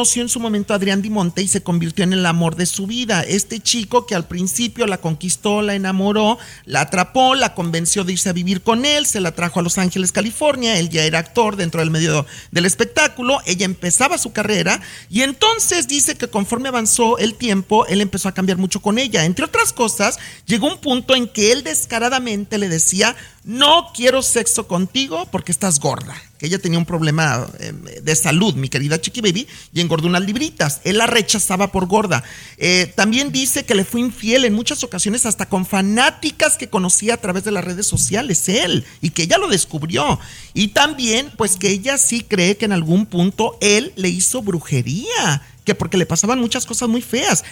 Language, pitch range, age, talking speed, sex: Spanish, 175-235 Hz, 40-59, 205 wpm, male